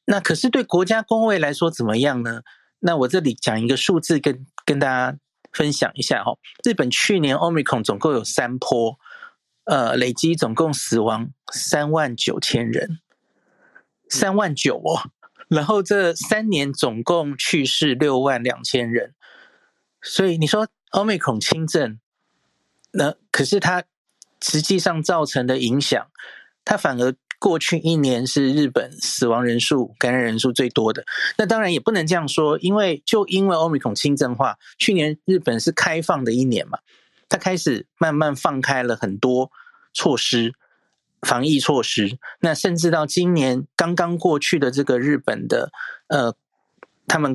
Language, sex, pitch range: Chinese, male, 125-180 Hz